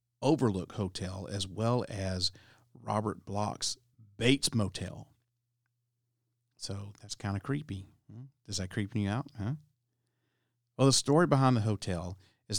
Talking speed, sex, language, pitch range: 130 wpm, male, English, 100-125 Hz